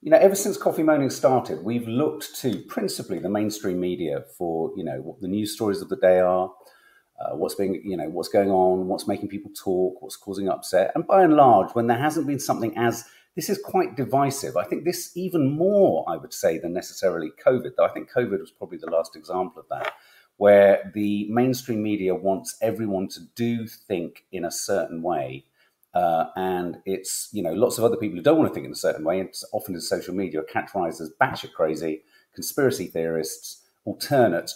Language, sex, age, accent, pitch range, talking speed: English, male, 40-59, British, 95-150 Hz, 210 wpm